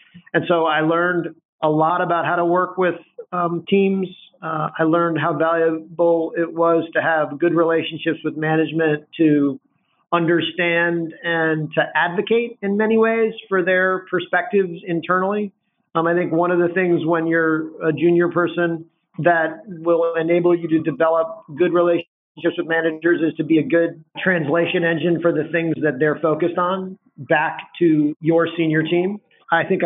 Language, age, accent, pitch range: English, 40-59, American, 155-175 Hz